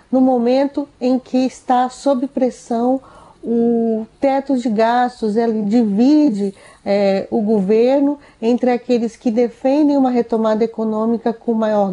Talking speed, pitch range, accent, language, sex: 125 wpm, 220-255 Hz, Brazilian, Portuguese, female